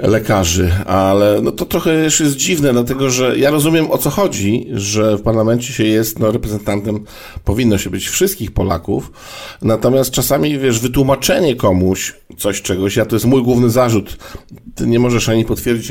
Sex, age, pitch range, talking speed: male, 50-69, 95-115 Hz, 170 wpm